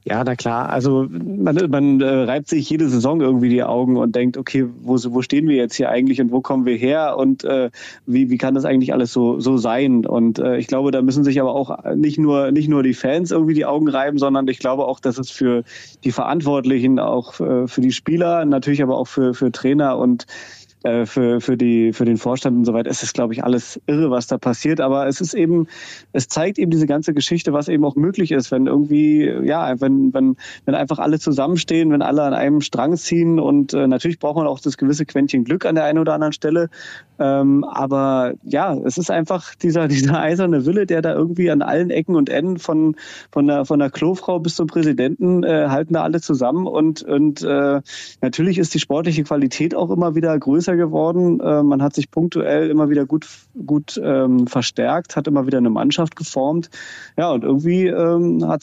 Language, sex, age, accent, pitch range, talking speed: German, male, 30-49, German, 130-165 Hz, 215 wpm